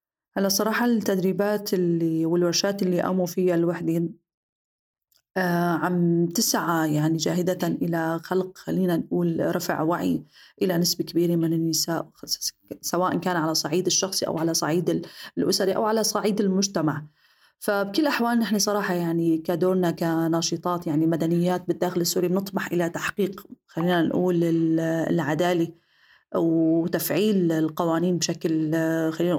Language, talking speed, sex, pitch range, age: Arabic, 120 wpm, female, 165-190 Hz, 30-49